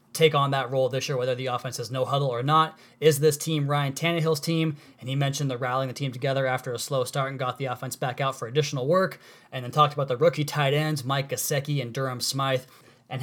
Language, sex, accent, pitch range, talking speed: English, male, American, 130-150 Hz, 250 wpm